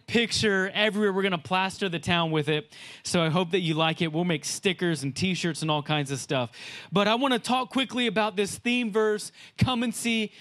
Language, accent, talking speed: English, American, 230 wpm